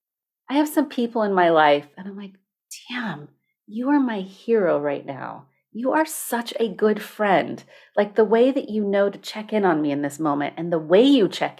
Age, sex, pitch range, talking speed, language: 40-59, female, 180-260 Hz, 215 wpm, English